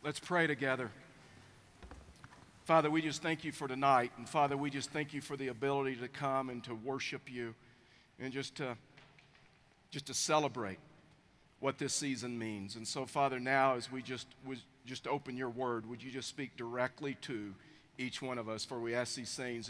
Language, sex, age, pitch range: English, male, 50-69, 130-155 Hz